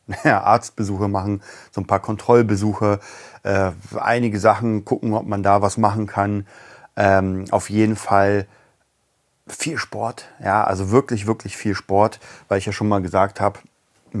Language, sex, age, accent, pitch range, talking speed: German, male, 40-59, German, 95-110 Hz, 150 wpm